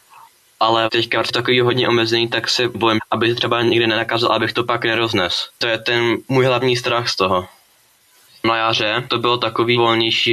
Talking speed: 180 wpm